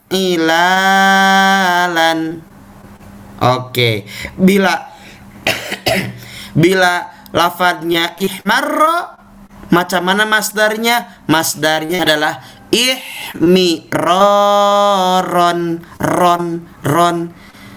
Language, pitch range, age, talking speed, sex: Malay, 160-205 Hz, 20-39, 50 wpm, male